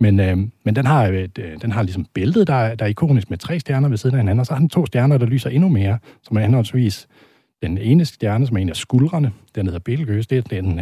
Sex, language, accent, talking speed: male, Danish, native, 275 wpm